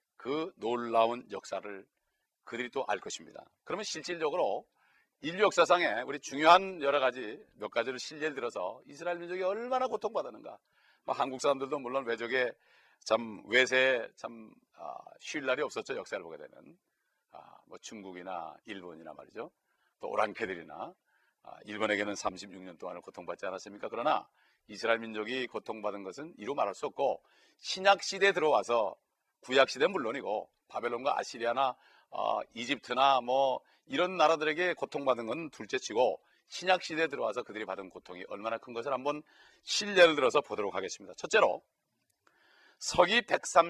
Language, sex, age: Korean, male, 40-59